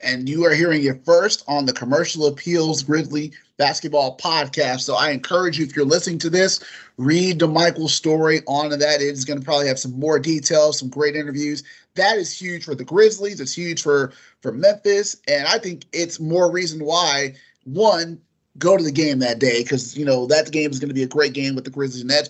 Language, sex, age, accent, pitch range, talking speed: English, male, 30-49, American, 145-180 Hz, 220 wpm